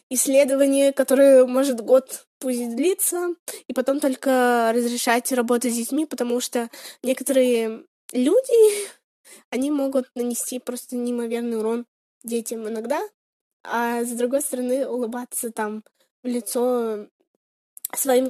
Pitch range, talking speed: 230-275 Hz, 110 wpm